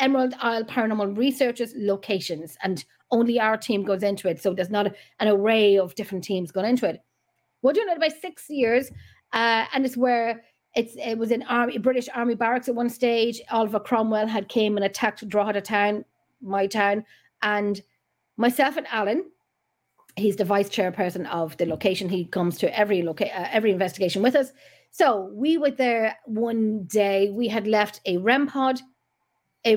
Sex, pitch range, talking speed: female, 195-250 Hz, 175 wpm